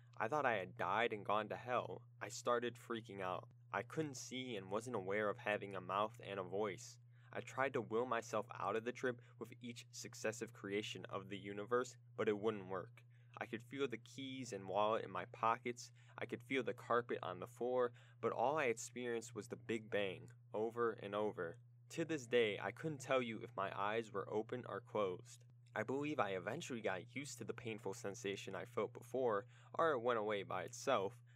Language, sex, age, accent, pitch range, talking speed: English, male, 10-29, American, 105-120 Hz, 205 wpm